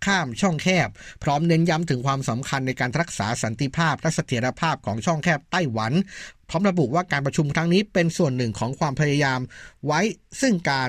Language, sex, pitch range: Thai, male, 125-165 Hz